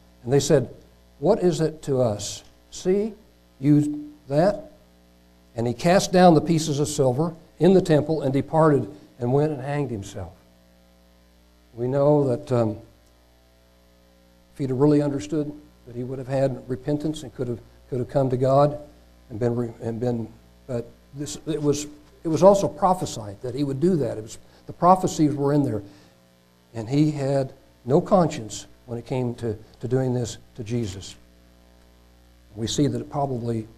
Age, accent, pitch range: 60-79, American, 105-150 Hz